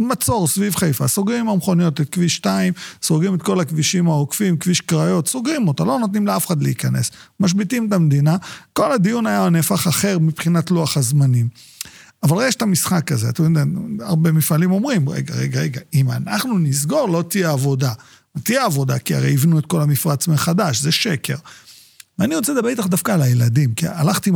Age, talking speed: 40-59, 180 wpm